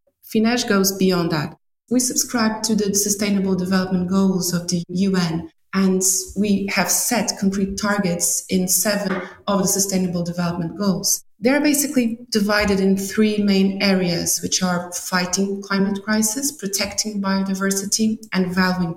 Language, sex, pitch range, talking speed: English, female, 185-215 Hz, 135 wpm